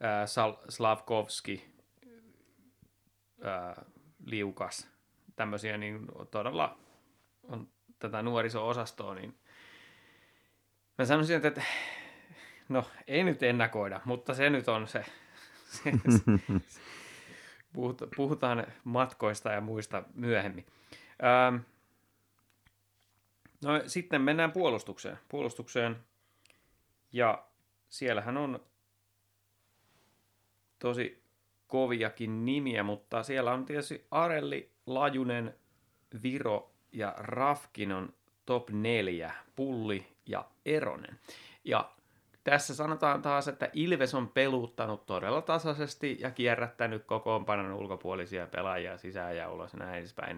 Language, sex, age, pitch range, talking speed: Finnish, male, 30-49, 100-130 Hz, 95 wpm